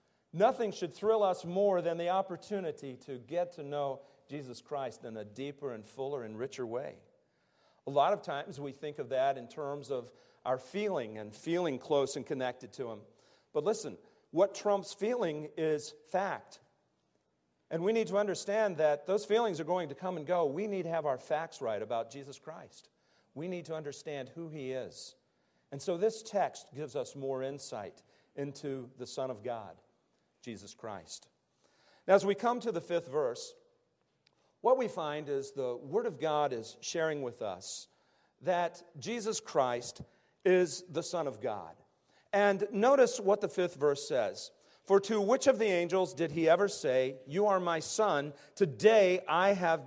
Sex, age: male, 40-59